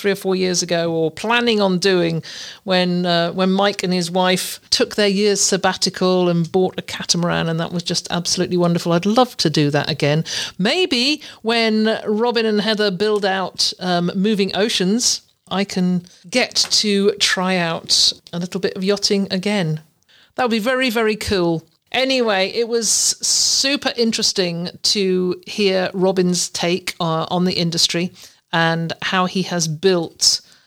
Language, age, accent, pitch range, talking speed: English, 50-69, British, 175-215 Hz, 160 wpm